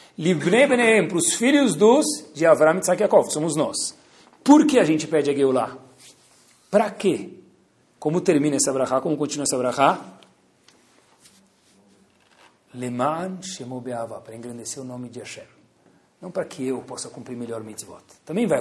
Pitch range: 150-210 Hz